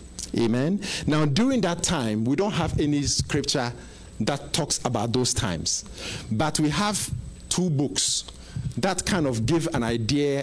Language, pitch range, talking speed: English, 115-155 Hz, 150 wpm